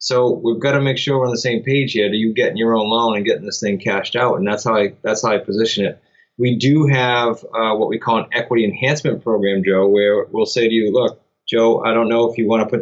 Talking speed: 280 wpm